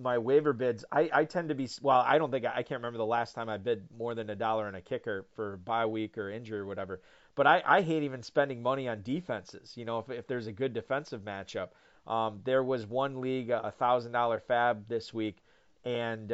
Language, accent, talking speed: English, American, 235 wpm